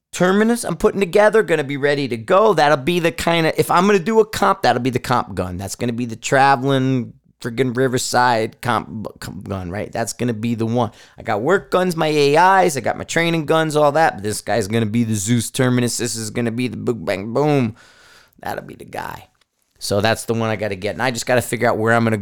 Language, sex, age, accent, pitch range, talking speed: English, male, 30-49, American, 115-155 Hz, 245 wpm